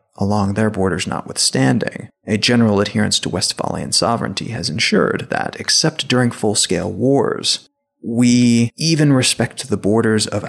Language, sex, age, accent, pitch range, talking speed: English, male, 30-49, American, 105-135 Hz, 130 wpm